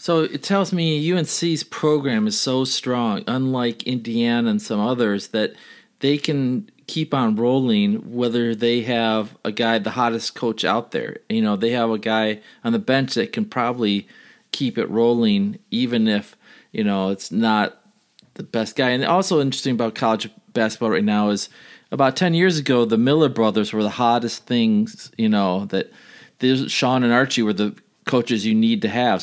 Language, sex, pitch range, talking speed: English, male, 115-150 Hz, 180 wpm